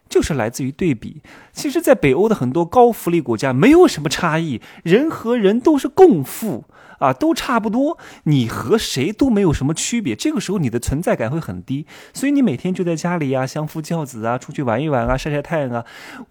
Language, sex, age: Chinese, male, 20-39